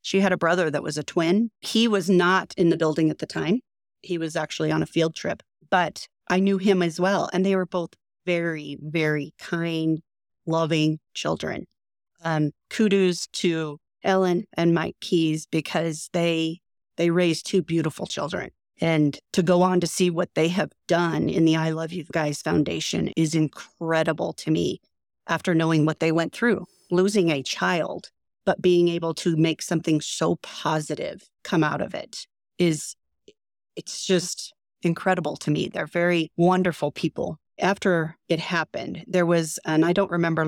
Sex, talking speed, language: female, 170 wpm, English